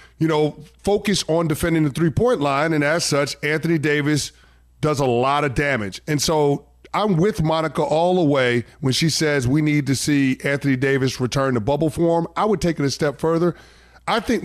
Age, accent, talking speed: 30-49, American, 200 wpm